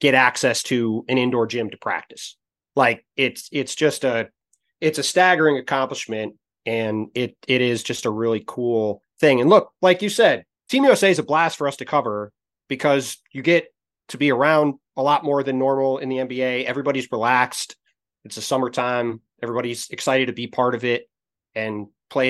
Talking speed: 185 wpm